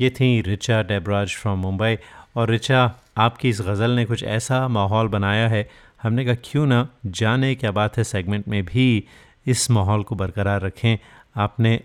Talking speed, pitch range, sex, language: 170 wpm, 100-120 Hz, male, Hindi